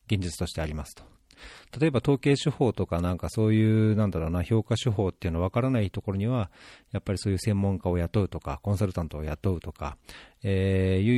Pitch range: 90-125 Hz